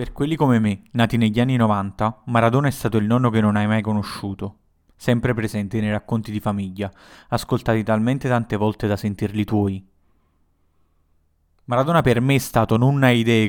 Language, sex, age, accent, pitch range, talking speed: Italian, male, 20-39, native, 100-115 Hz, 175 wpm